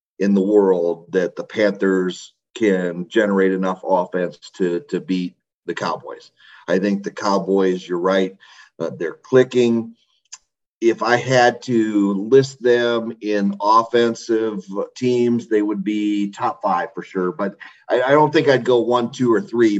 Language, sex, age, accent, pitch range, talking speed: English, male, 40-59, American, 95-115 Hz, 155 wpm